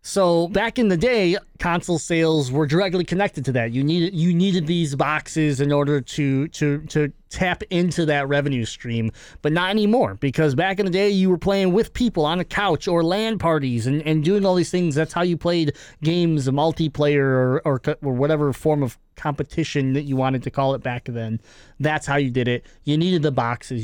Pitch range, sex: 145-190 Hz, male